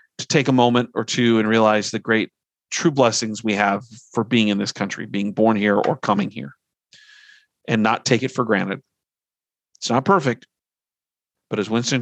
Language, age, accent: English, 40-59, American